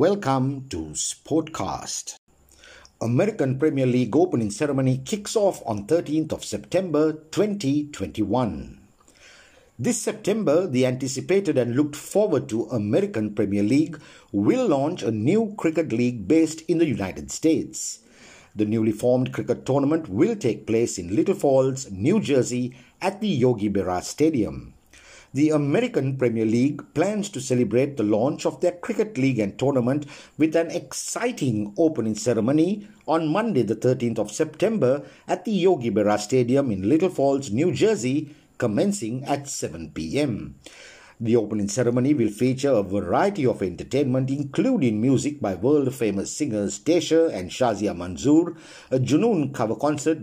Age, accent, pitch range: 50-69, Indian, 120-160 Hz